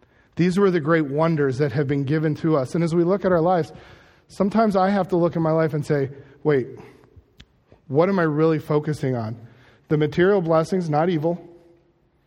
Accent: American